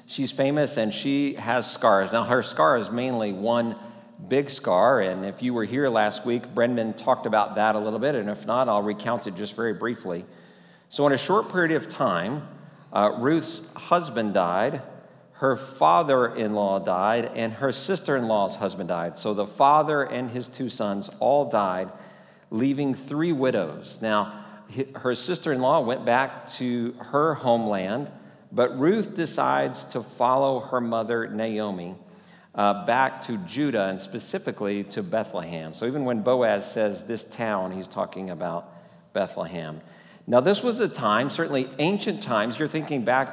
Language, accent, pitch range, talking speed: English, American, 110-145 Hz, 160 wpm